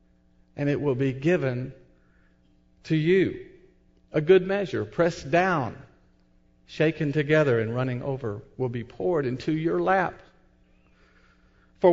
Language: English